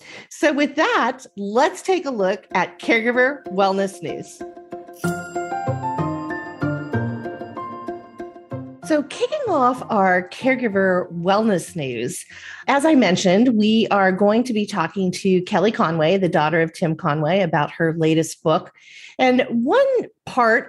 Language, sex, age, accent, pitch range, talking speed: English, female, 40-59, American, 180-235 Hz, 120 wpm